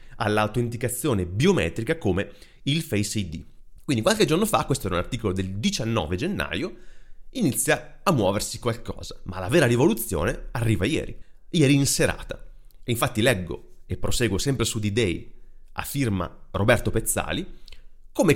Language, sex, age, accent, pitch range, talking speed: Italian, male, 30-49, native, 95-130 Hz, 135 wpm